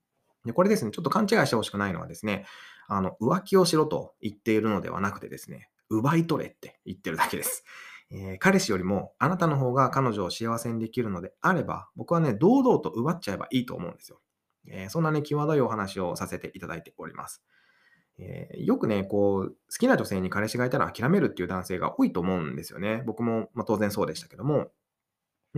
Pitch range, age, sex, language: 100-155 Hz, 20-39, male, Japanese